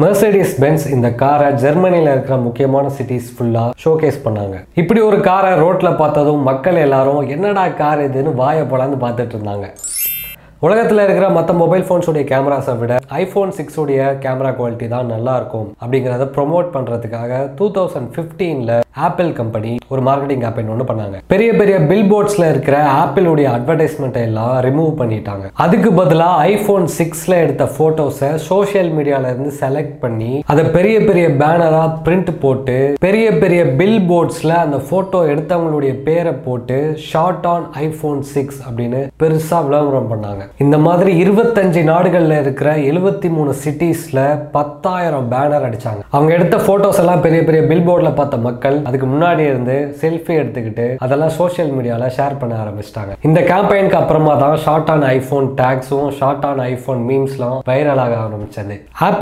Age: 20-39